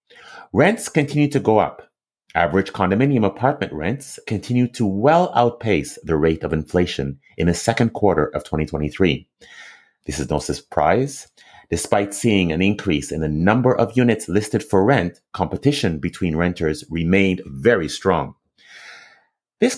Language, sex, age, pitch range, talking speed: English, male, 30-49, 80-120 Hz, 140 wpm